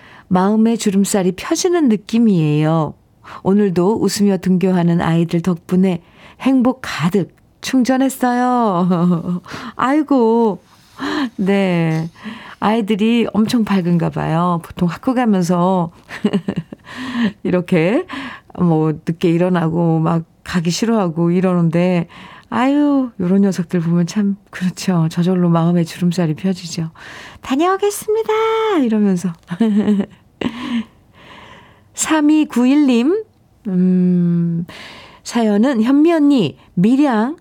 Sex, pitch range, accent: female, 175-240 Hz, native